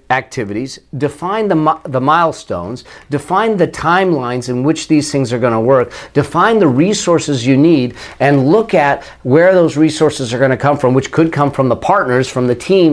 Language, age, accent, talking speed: English, 40-59, American, 190 wpm